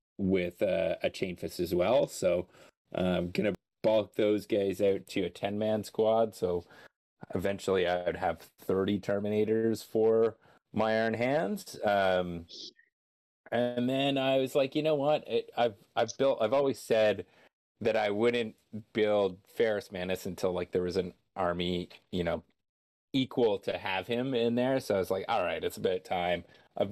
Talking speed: 170 wpm